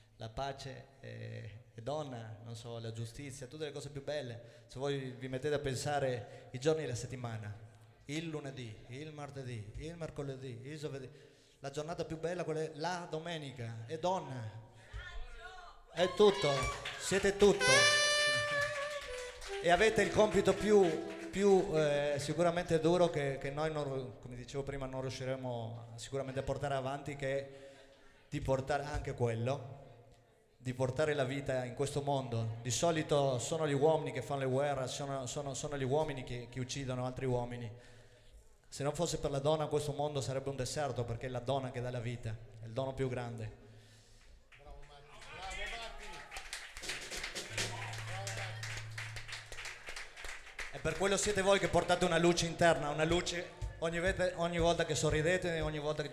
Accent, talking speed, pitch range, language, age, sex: native, 150 wpm, 125-155 Hz, Italian, 30-49, male